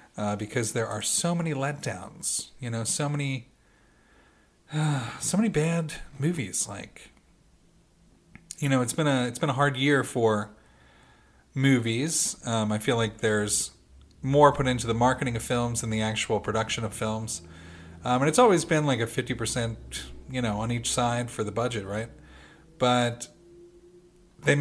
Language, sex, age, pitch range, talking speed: English, male, 40-59, 110-140 Hz, 160 wpm